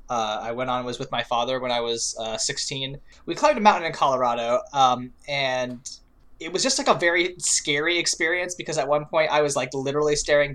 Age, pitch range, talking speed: 20-39, 115-150 Hz, 215 wpm